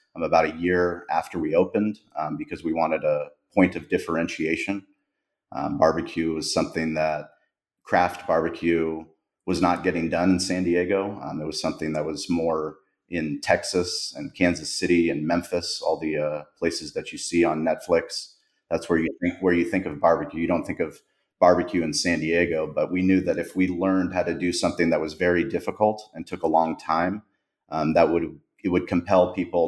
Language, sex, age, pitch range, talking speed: English, male, 30-49, 80-95 Hz, 190 wpm